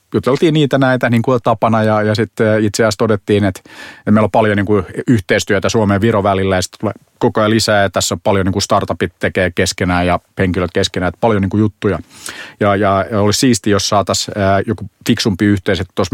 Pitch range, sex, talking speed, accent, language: 100-115 Hz, male, 195 wpm, native, Finnish